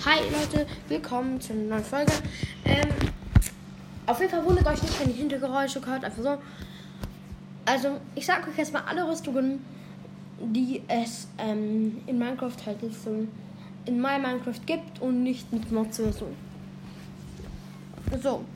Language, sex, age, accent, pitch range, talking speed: German, female, 10-29, German, 225-275 Hz, 150 wpm